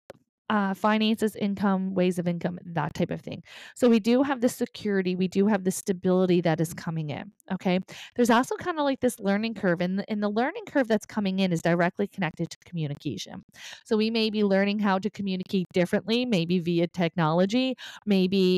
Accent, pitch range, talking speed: American, 180-220 Hz, 195 wpm